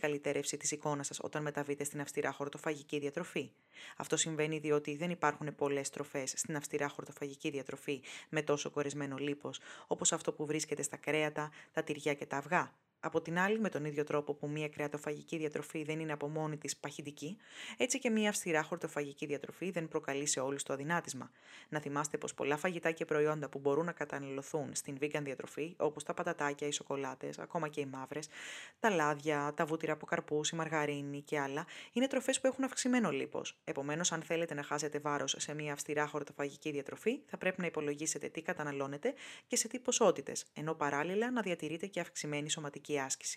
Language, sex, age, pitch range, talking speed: Greek, female, 20-39, 145-170 Hz, 185 wpm